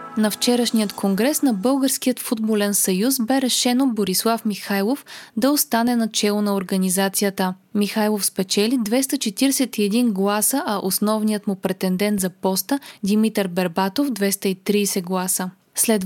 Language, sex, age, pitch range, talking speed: Bulgarian, female, 20-39, 200-255 Hz, 115 wpm